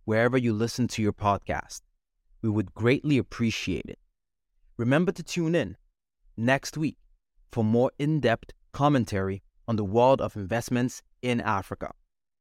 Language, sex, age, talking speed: English, male, 30-49, 135 wpm